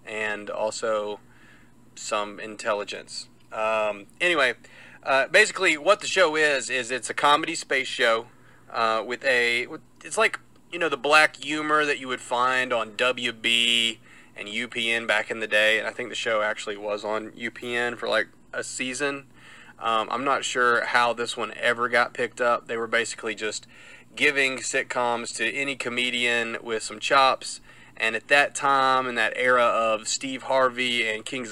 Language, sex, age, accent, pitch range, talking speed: English, male, 30-49, American, 115-145 Hz, 170 wpm